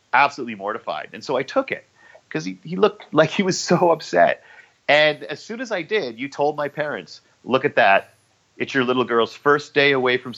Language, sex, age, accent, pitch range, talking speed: English, male, 40-59, American, 105-145 Hz, 215 wpm